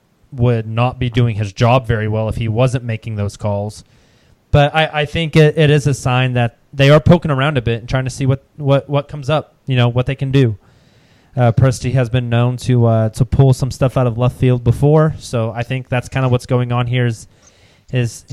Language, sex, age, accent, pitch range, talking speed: English, male, 20-39, American, 115-140 Hz, 240 wpm